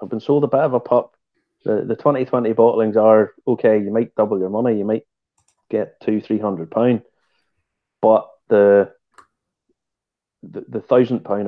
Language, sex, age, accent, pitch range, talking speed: English, male, 30-49, British, 105-130 Hz, 160 wpm